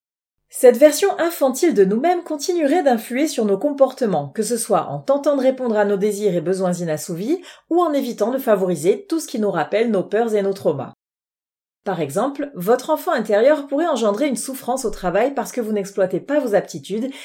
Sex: female